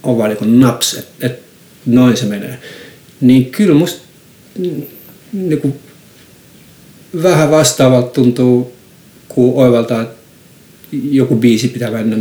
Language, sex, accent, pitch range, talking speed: Finnish, male, native, 110-135 Hz, 95 wpm